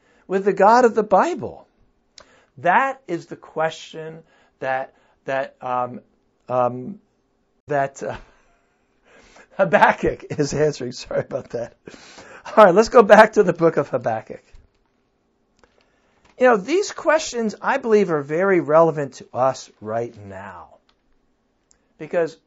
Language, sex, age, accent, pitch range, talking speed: English, male, 60-79, American, 160-215 Hz, 120 wpm